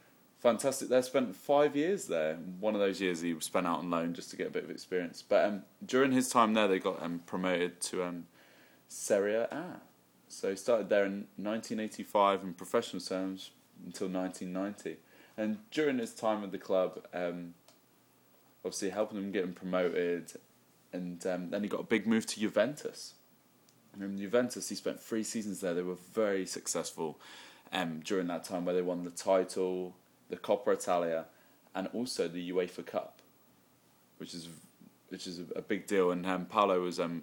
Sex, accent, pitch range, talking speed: male, British, 90-100 Hz, 180 wpm